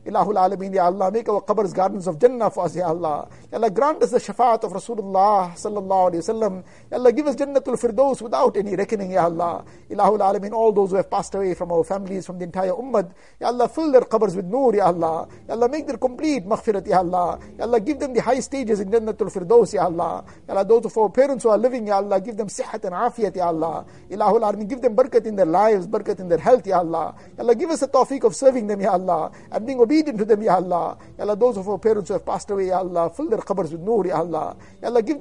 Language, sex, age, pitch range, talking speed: English, male, 50-69, 190-250 Hz, 250 wpm